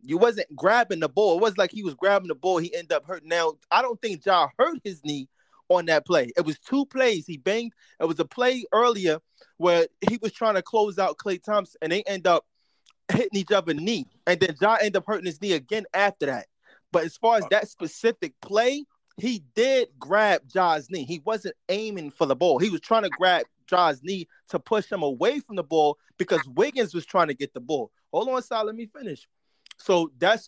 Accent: American